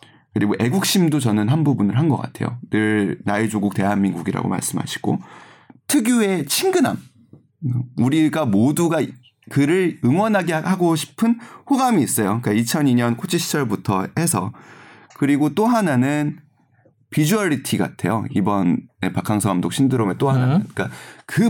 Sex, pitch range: male, 115-170 Hz